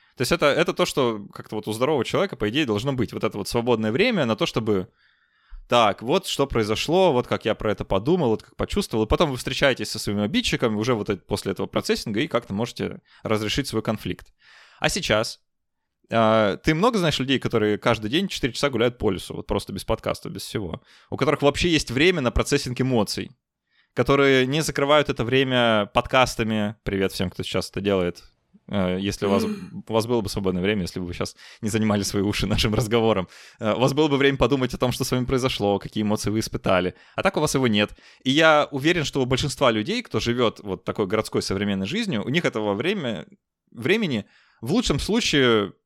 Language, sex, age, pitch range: Russian, male, 20-39, 105-140 Hz